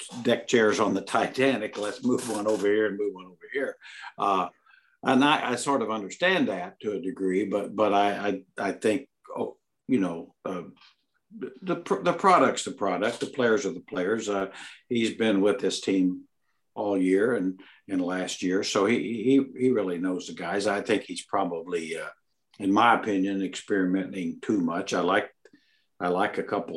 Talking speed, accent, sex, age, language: 190 wpm, American, male, 60-79, English